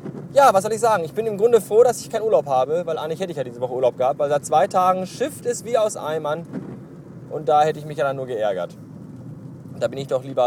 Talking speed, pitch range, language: 275 wpm, 150-200 Hz, German